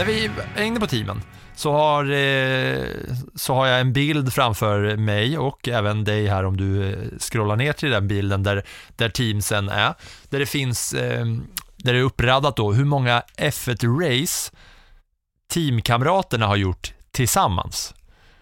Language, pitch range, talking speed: English, 100-135 Hz, 145 wpm